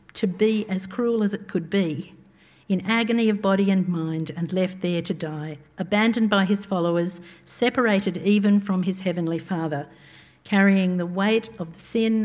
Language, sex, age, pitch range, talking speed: English, female, 50-69, 165-210 Hz, 170 wpm